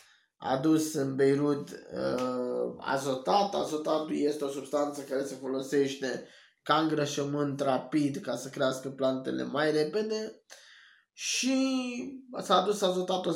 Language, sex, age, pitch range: Romanian, male, 20-39, 140-175 Hz